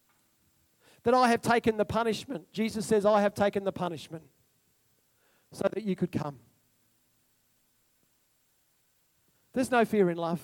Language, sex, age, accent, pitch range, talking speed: English, male, 40-59, Australian, 185-265 Hz, 130 wpm